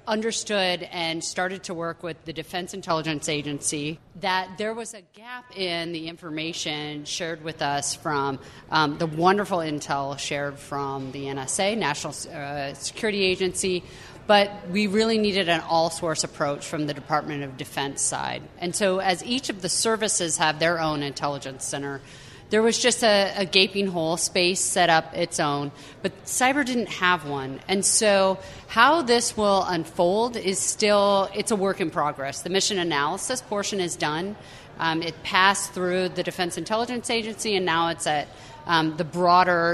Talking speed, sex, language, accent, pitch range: 165 wpm, female, English, American, 150-195 Hz